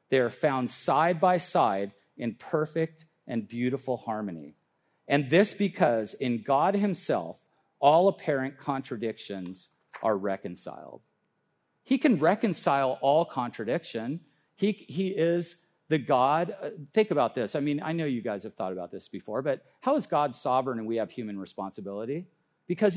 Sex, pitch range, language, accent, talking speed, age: male, 120-175 Hz, English, American, 150 wpm, 40-59